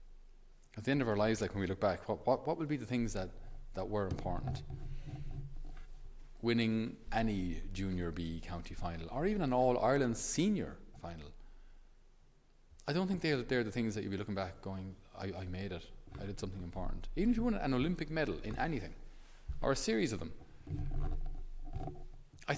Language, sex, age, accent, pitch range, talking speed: English, male, 30-49, Irish, 90-125 Hz, 185 wpm